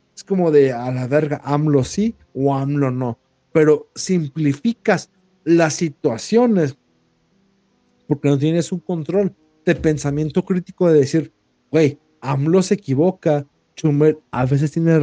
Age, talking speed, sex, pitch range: 50-69, 130 wpm, male, 150-205 Hz